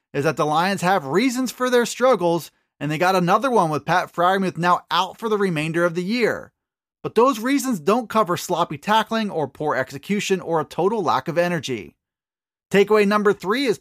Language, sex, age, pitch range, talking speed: English, male, 30-49, 175-235 Hz, 195 wpm